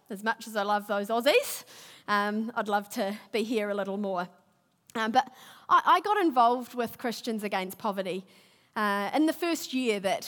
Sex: female